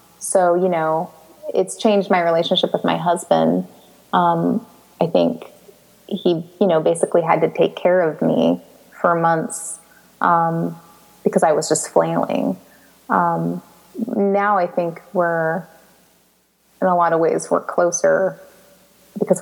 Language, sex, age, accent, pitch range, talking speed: English, female, 20-39, American, 165-200 Hz, 135 wpm